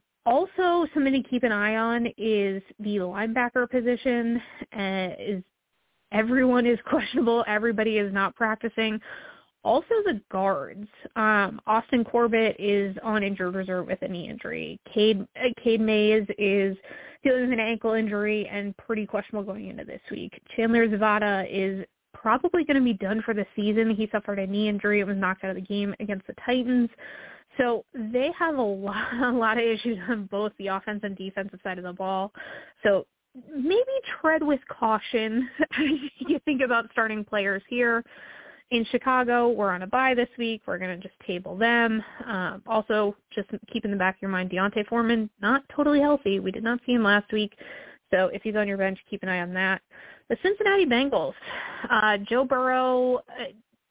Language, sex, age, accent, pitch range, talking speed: English, female, 20-39, American, 200-250 Hz, 180 wpm